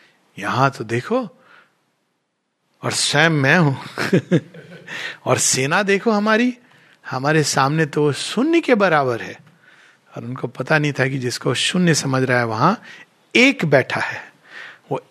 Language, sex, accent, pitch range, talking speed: Hindi, male, native, 130-170 Hz, 135 wpm